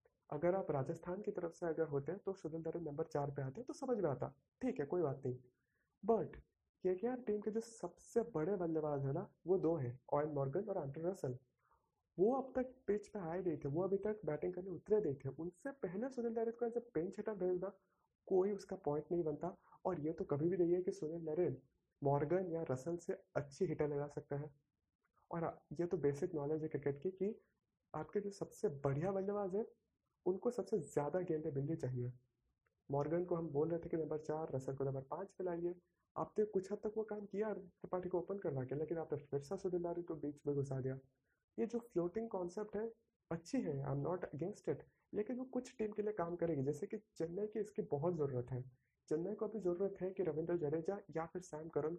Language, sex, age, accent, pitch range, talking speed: Hindi, male, 30-49, native, 145-200 Hz, 210 wpm